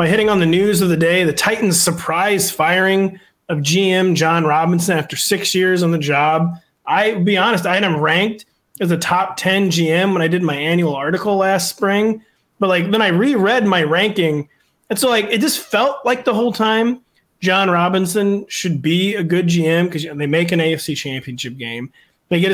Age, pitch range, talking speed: 30-49, 155-200 Hz, 205 wpm